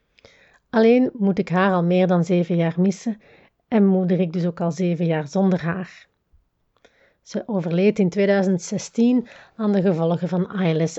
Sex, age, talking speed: female, 30-49, 160 wpm